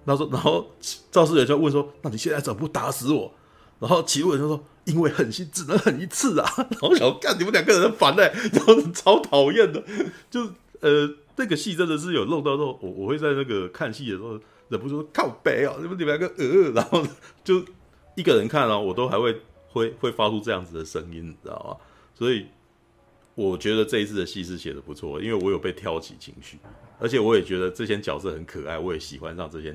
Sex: male